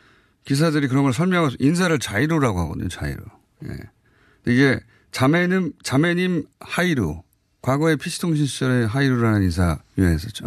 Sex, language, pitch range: male, Korean, 105-150 Hz